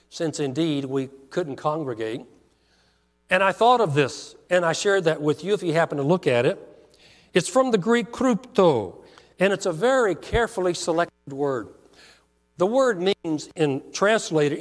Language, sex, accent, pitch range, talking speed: English, male, American, 150-210 Hz, 165 wpm